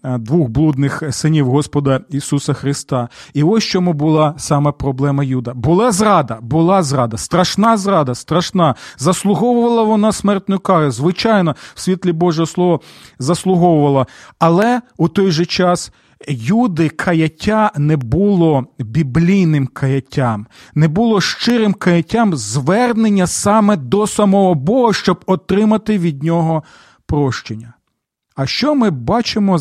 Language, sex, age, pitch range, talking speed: Ukrainian, male, 40-59, 150-205 Hz, 120 wpm